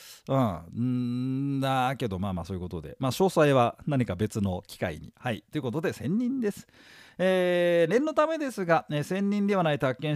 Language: Japanese